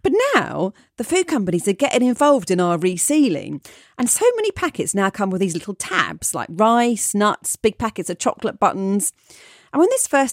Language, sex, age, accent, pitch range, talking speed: English, female, 40-59, British, 170-275 Hz, 190 wpm